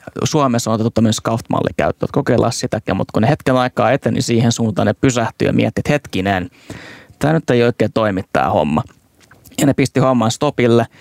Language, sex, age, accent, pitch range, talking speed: Finnish, male, 20-39, native, 105-120 Hz, 190 wpm